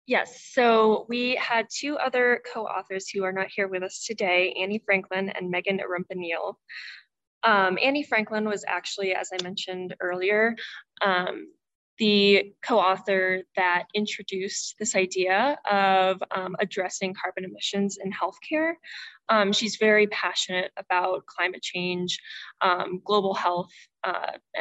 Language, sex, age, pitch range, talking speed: English, female, 20-39, 185-215 Hz, 130 wpm